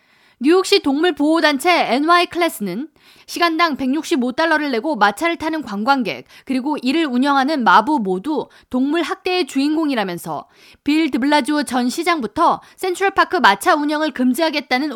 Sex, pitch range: female, 245-340 Hz